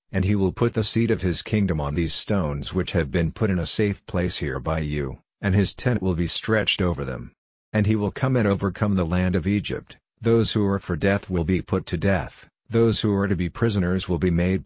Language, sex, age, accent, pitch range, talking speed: English, male, 50-69, American, 90-105 Hz, 245 wpm